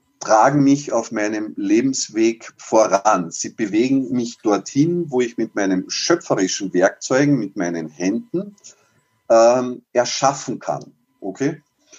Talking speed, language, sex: 115 wpm, German, male